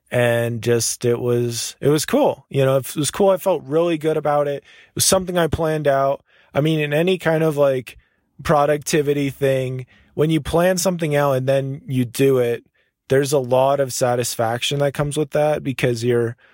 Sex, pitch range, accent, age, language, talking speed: male, 120-140 Hz, American, 20-39, English, 195 wpm